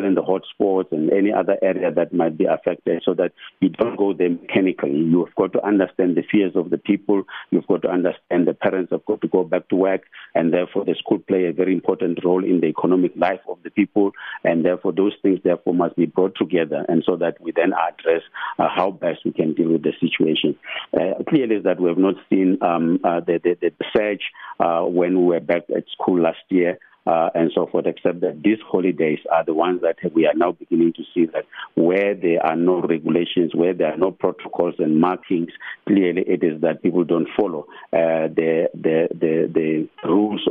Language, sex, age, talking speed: English, male, 50-69, 215 wpm